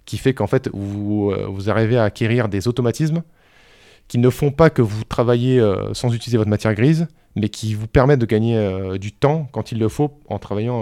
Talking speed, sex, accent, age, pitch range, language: 215 wpm, male, French, 20-39, 105-125 Hz, French